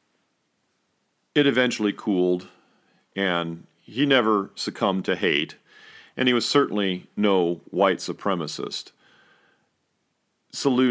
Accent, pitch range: American, 85-105 Hz